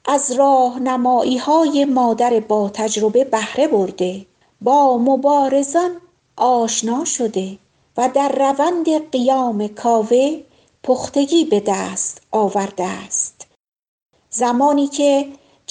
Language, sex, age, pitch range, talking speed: Persian, female, 50-69, 225-275 Hz, 90 wpm